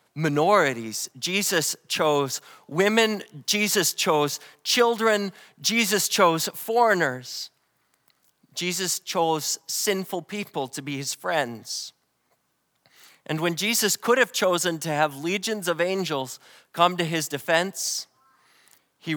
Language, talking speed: English, 105 wpm